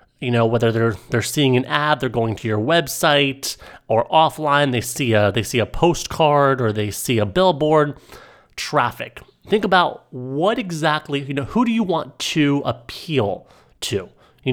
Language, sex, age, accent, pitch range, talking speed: English, male, 30-49, American, 120-165 Hz, 175 wpm